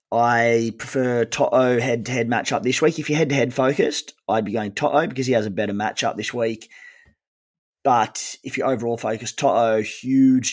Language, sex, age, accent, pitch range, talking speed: English, male, 20-39, Australian, 105-125 Hz, 170 wpm